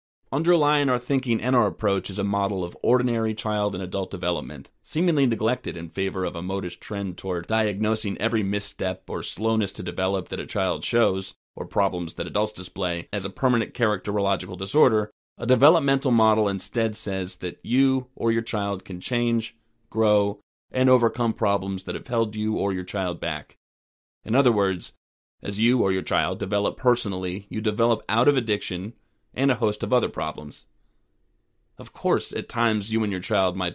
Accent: American